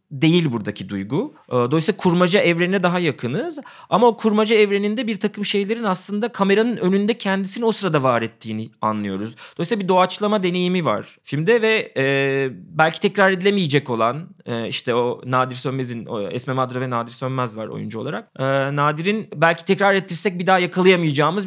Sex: male